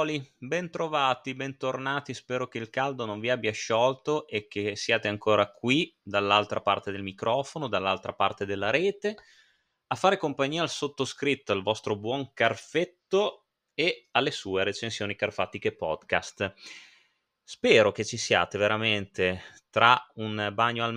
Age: 30-49